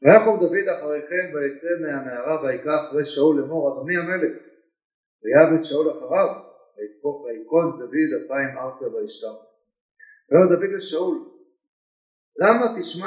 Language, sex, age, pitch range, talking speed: Hebrew, male, 50-69, 140-185 Hz, 120 wpm